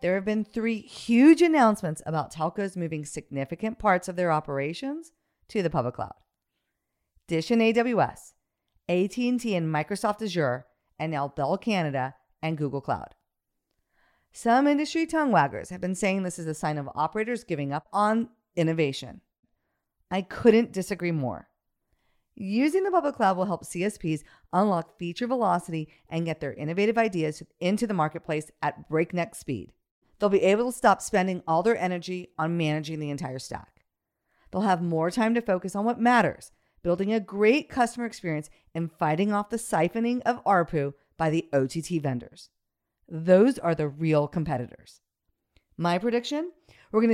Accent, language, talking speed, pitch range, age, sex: American, English, 155 wpm, 160-225 Hz, 40-59, female